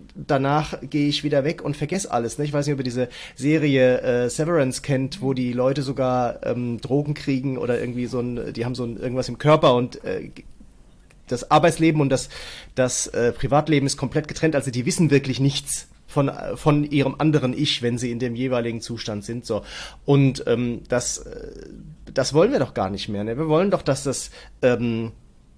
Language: German